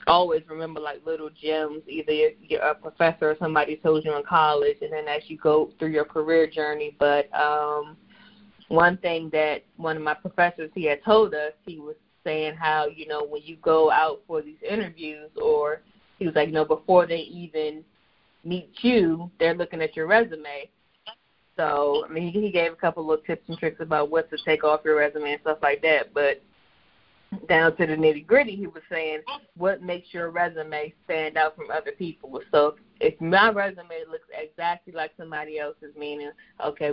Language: English